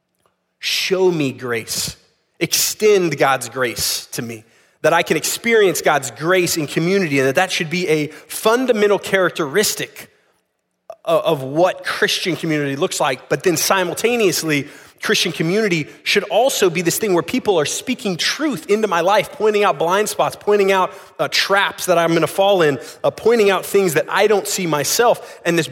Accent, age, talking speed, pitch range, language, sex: American, 30-49, 170 wpm, 155-205 Hz, English, male